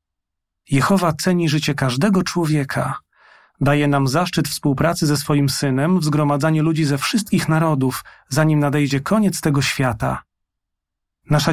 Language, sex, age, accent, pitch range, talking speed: Polish, male, 40-59, native, 135-165 Hz, 120 wpm